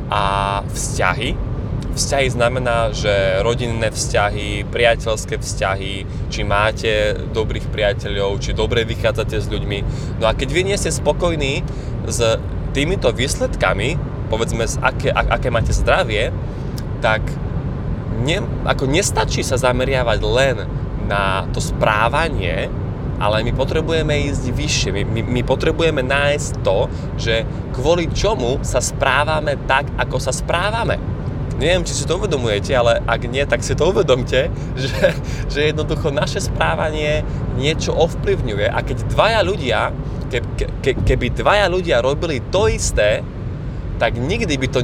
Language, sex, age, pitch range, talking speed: Slovak, male, 20-39, 110-135 Hz, 130 wpm